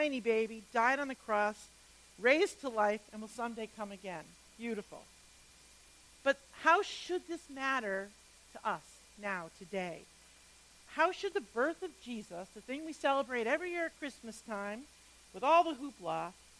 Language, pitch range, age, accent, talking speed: English, 210-280 Hz, 50-69, American, 150 wpm